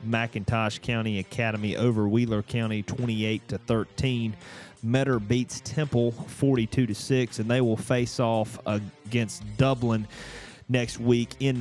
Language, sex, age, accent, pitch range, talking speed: English, male, 30-49, American, 105-120 Hz, 130 wpm